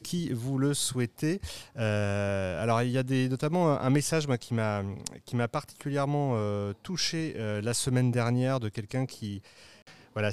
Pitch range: 105-140 Hz